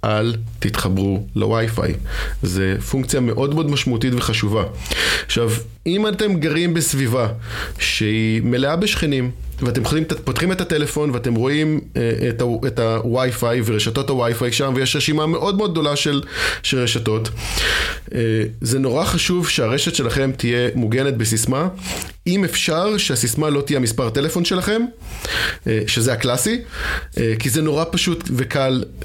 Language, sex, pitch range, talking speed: Hebrew, male, 115-160 Hz, 135 wpm